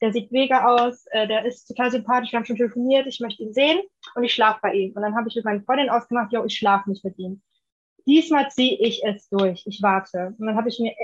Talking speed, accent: 260 wpm, German